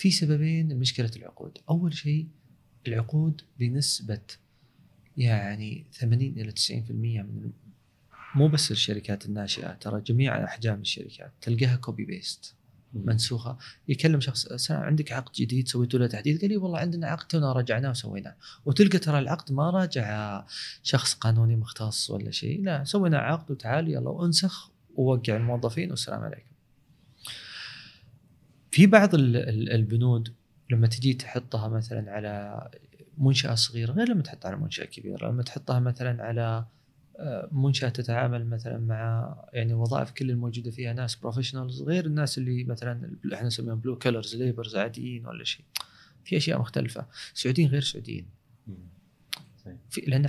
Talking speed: 135 wpm